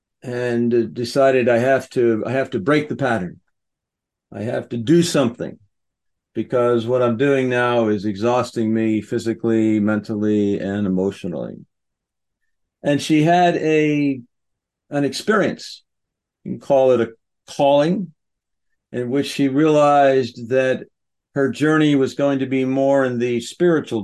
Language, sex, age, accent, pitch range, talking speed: English, male, 50-69, American, 105-135 Hz, 135 wpm